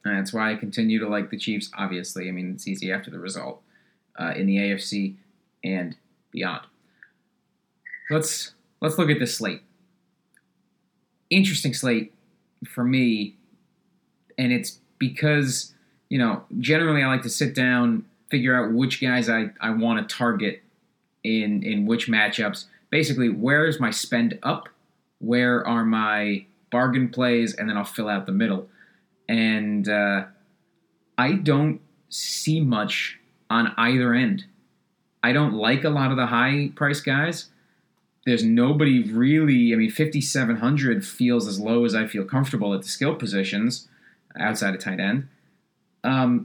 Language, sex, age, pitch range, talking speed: English, male, 30-49, 110-155 Hz, 150 wpm